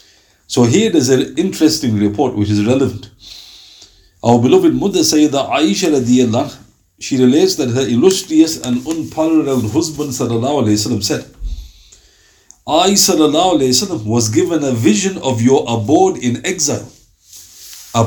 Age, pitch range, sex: 50-69, 110-150 Hz, male